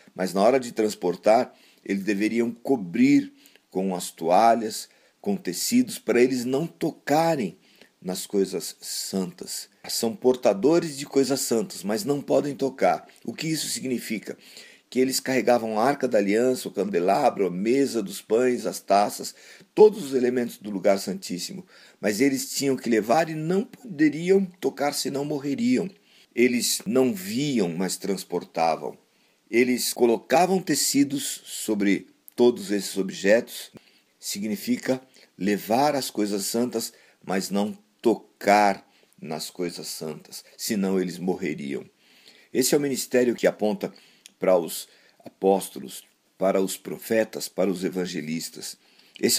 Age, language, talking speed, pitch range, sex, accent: 50-69, Portuguese, 130 wpm, 100-145 Hz, male, Brazilian